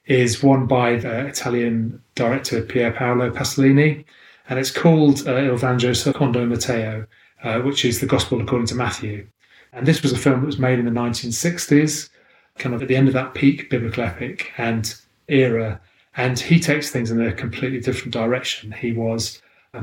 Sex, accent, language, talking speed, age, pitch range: male, British, English, 180 wpm, 30-49, 115-135 Hz